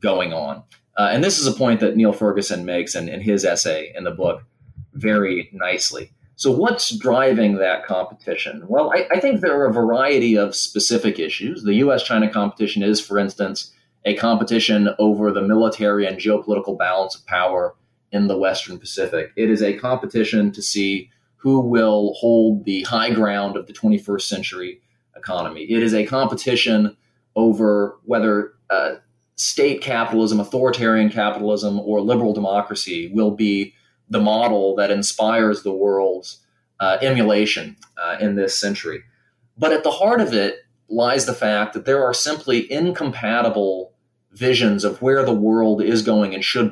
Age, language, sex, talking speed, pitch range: 30-49, English, male, 165 wpm, 100-120 Hz